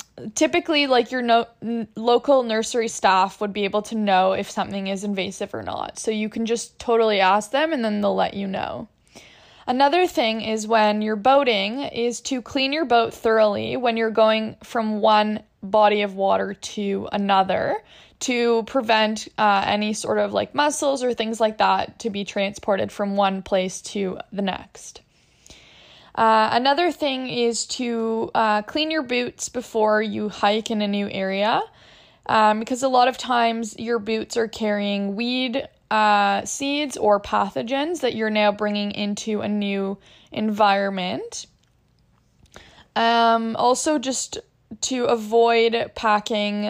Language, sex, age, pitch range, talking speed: English, female, 10-29, 205-240 Hz, 150 wpm